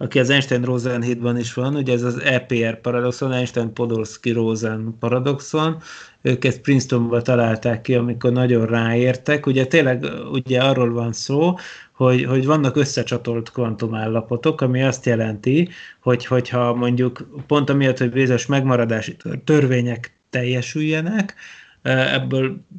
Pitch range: 120-140 Hz